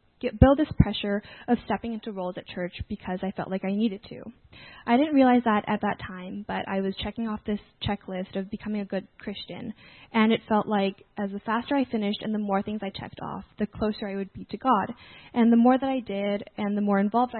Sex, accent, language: female, American, English